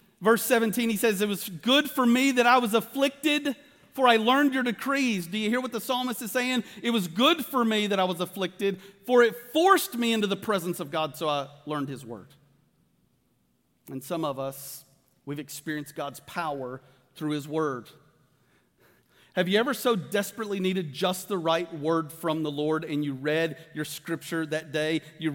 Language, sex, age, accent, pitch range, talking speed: English, male, 40-59, American, 155-240 Hz, 190 wpm